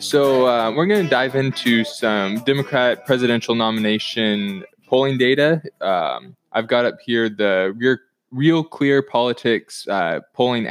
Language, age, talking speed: English, 20-39, 140 wpm